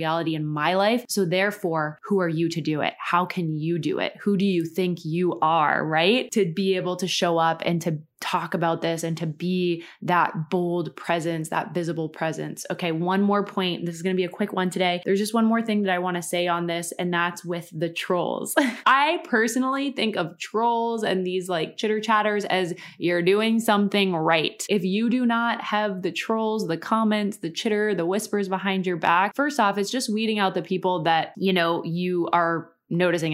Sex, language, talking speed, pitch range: female, English, 210 wpm, 170-210 Hz